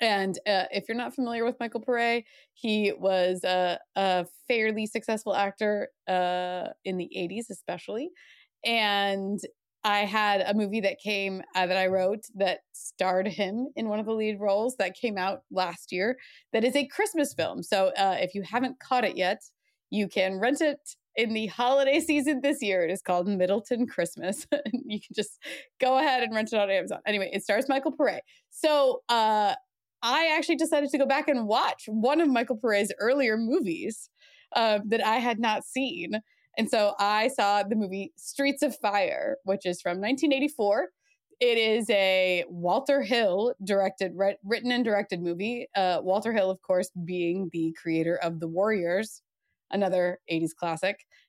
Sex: female